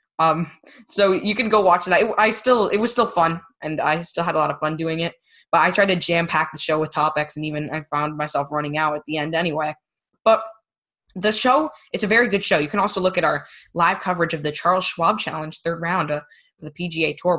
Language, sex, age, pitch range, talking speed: English, female, 10-29, 155-185 Hz, 245 wpm